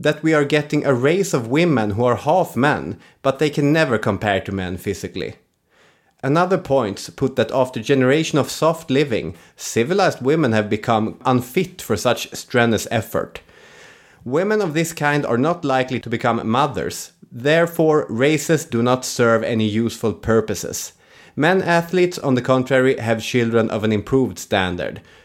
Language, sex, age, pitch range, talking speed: English, male, 30-49, 110-145 Hz, 160 wpm